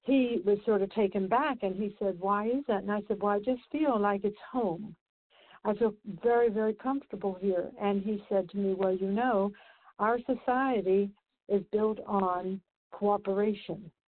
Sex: female